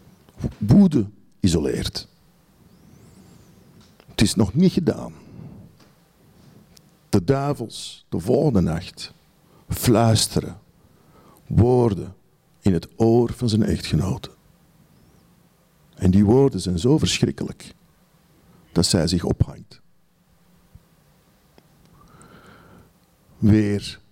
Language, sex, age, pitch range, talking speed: Dutch, male, 60-79, 95-135 Hz, 75 wpm